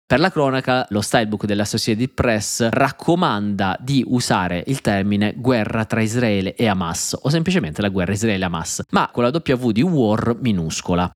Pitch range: 100-130 Hz